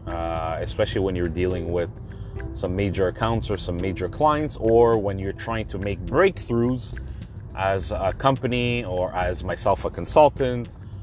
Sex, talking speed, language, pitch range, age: male, 150 wpm, English, 95-115 Hz, 30-49